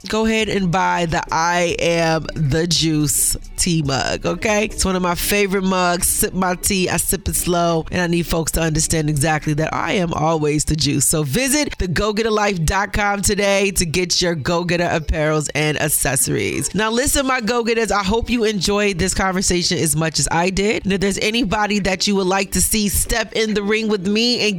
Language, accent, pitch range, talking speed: English, American, 165-215 Hz, 205 wpm